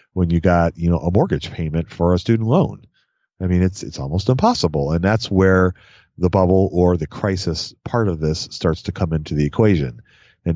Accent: American